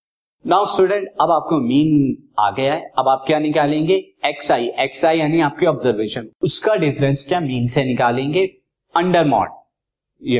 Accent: native